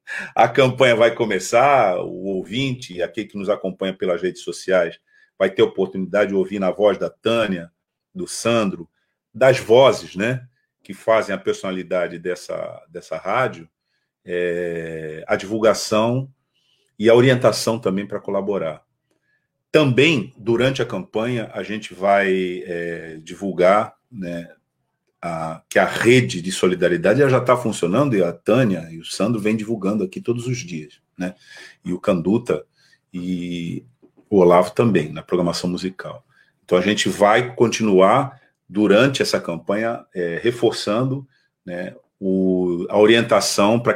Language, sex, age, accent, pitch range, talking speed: Portuguese, male, 50-69, Brazilian, 90-115 Hz, 140 wpm